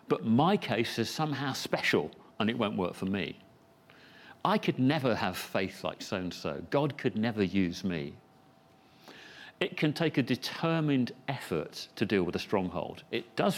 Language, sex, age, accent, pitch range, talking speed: English, male, 40-59, British, 95-150 Hz, 165 wpm